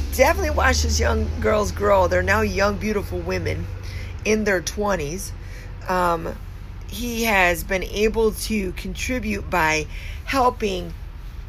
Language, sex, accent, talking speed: English, female, American, 120 wpm